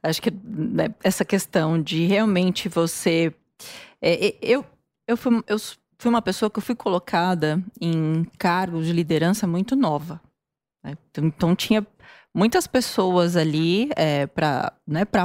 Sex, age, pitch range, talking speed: female, 20-39, 165-215 Hz, 145 wpm